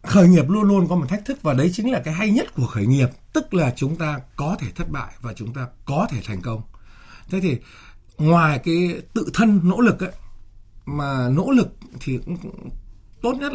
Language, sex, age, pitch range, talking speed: Vietnamese, male, 60-79, 125-185 Hz, 215 wpm